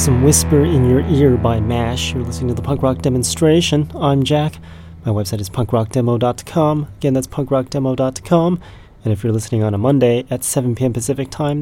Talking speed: 180 wpm